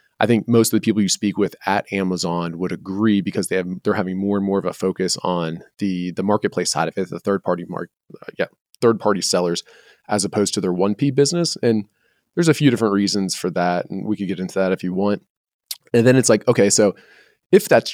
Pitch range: 90-110 Hz